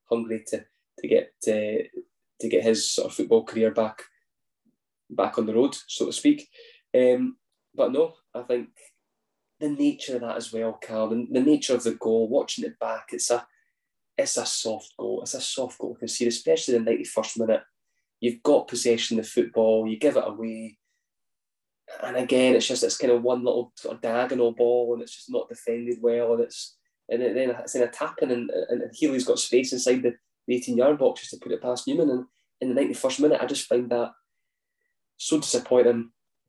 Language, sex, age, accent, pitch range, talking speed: English, male, 10-29, British, 115-135 Hz, 200 wpm